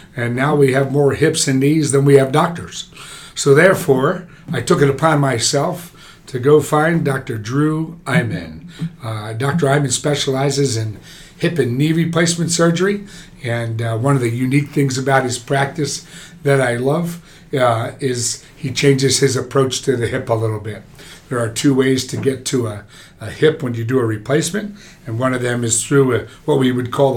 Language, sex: English, male